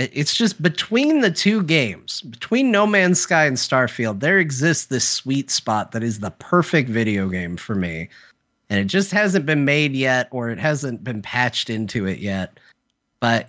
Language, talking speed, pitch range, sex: English, 180 wpm, 110-140 Hz, male